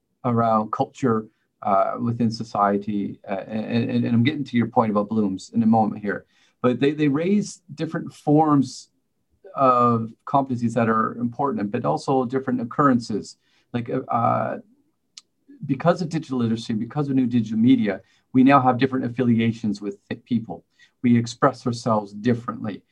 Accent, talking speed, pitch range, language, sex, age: American, 145 wpm, 110-140 Hz, English, male, 40-59